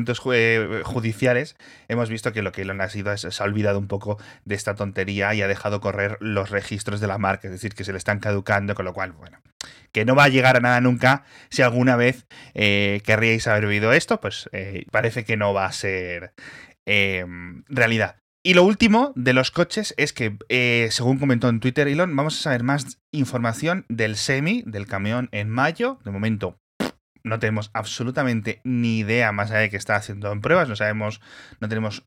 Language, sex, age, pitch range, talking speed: Spanish, male, 30-49, 100-130 Hz, 200 wpm